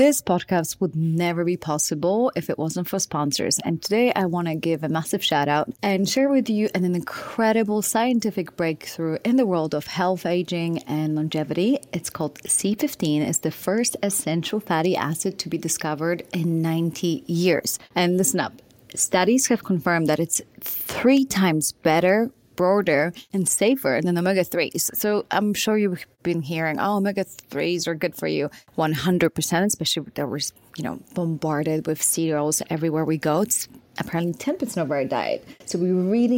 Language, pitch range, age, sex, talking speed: English, 160-200 Hz, 30-49, female, 165 wpm